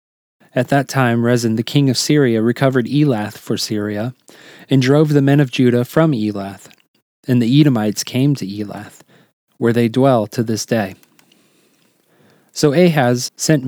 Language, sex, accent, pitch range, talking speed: English, male, American, 115-145 Hz, 155 wpm